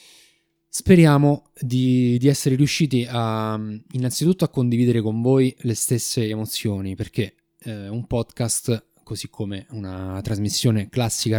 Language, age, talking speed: Italian, 20-39, 115 wpm